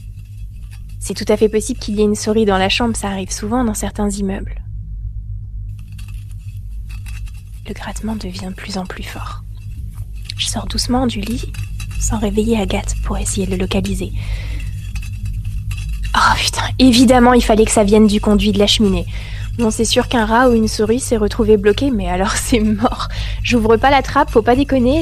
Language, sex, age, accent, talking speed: French, female, 20-39, French, 180 wpm